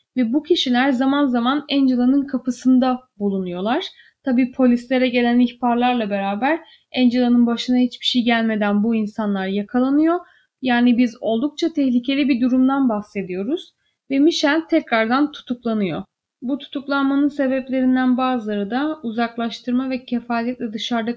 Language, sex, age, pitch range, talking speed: Turkish, female, 10-29, 220-270 Hz, 115 wpm